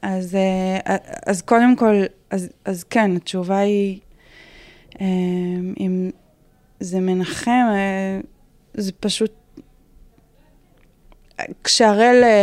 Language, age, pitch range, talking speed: Hebrew, 20-39, 185-200 Hz, 70 wpm